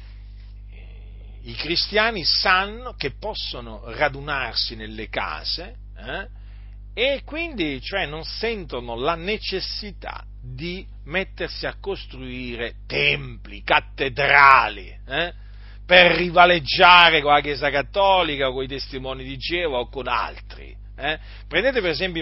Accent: native